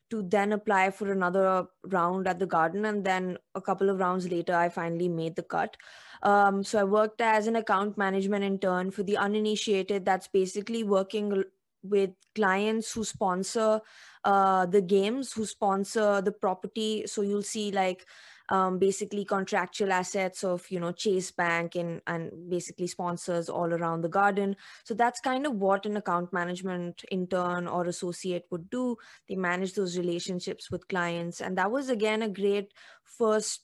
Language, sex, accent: English, female, Indian